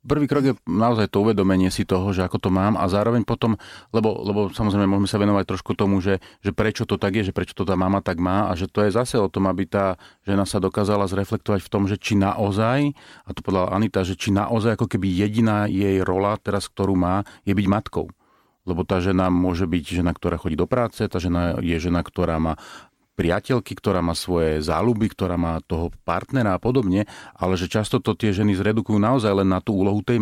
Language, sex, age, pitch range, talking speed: Slovak, male, 40-59, 95-120 Hz, 220 wpm